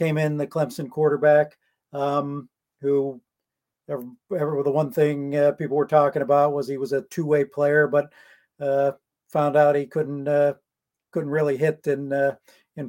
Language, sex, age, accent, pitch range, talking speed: English, male, 50-69, American, 140-155 Hz, 170 wpm